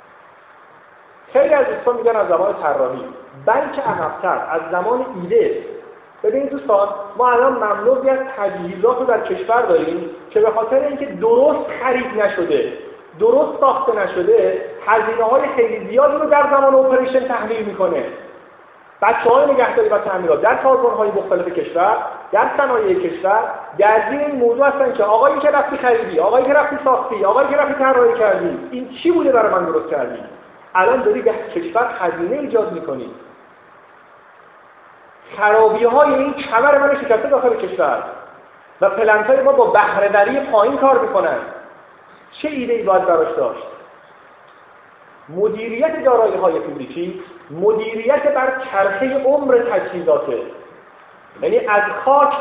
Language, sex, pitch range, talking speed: Persian, male, 215-290 Hz, 140 wpm